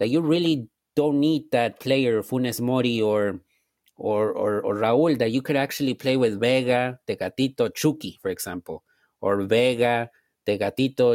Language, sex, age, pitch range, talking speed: English, male, 30-49, 120-140 Hz, 150 wpm